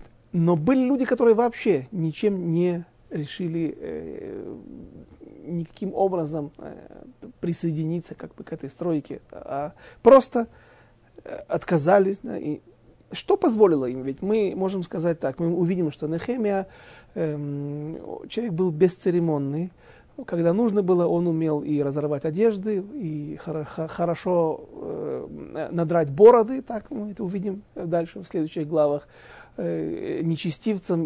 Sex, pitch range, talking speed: male, 150-200 Hz, 100 wpm